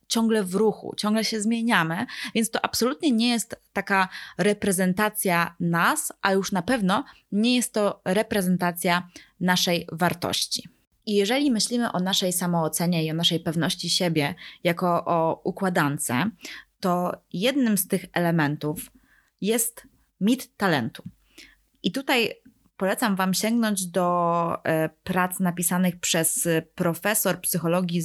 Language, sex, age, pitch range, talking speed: Polish, female, 20-39, 175-225 Hz, 120 wpm